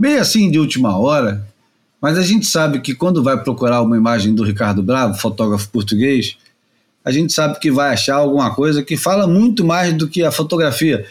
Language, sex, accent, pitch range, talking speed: Portuguese, male, Brazilian, 120-165 Hz, 195 wpm